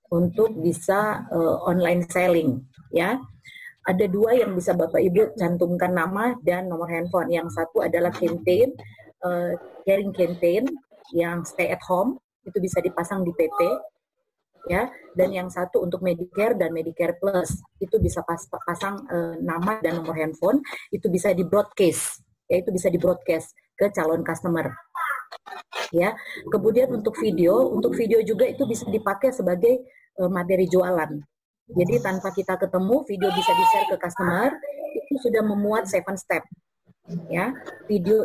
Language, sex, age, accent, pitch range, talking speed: Indonesian, female, 30-49, native, 175-220 Hz, 145 wpm